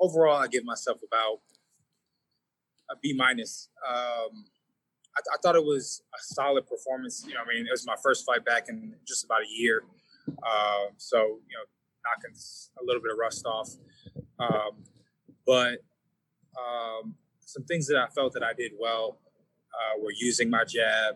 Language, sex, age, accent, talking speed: English, male, 20-39, American, 175 wpm